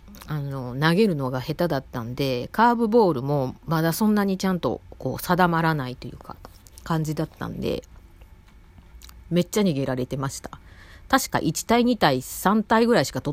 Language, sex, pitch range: Japanese, female, 125-195 Hz